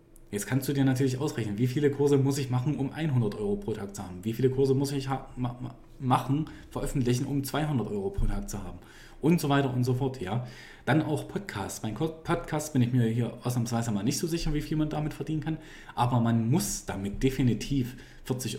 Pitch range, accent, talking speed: 115-140 Hz, German, 225 wpm